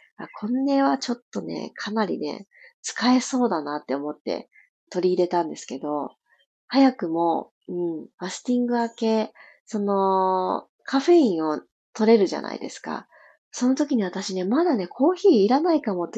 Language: Japanese